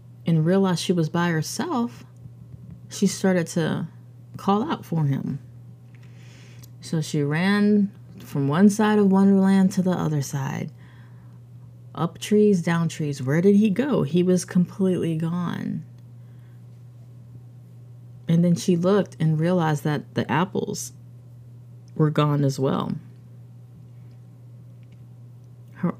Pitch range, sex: 120-175 Hz, female